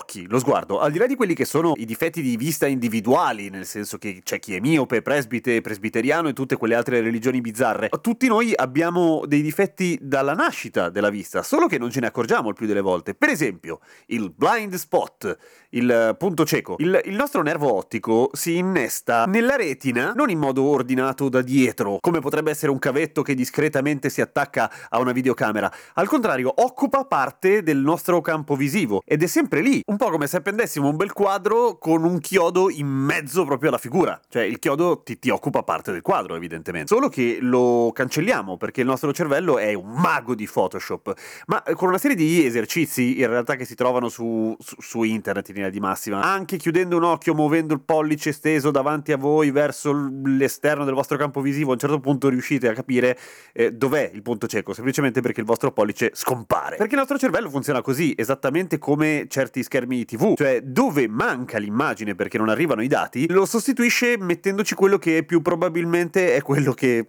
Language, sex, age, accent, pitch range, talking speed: Italian, male, 30-49, native, 120-170 Hz, 195 wpm